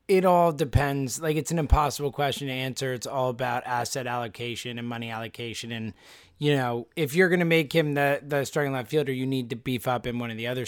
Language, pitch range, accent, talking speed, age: English, 130-150 Hz, American, 235 wpm, 20-39